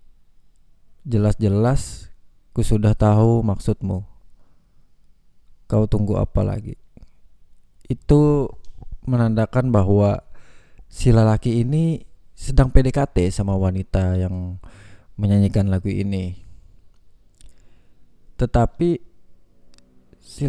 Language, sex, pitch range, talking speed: Indonesian, male, 95-115 Hz, 75 wpm